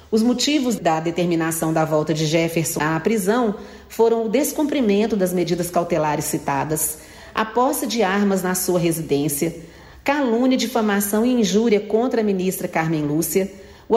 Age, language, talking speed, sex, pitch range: 40-59, Portuguese, 145 wpm, female, 170-225 Hz